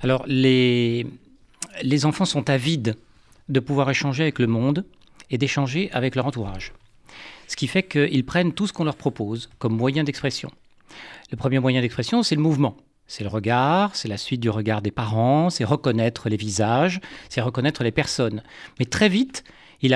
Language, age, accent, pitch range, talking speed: French, 40-59, French, 130-180 Hz, 175 wpm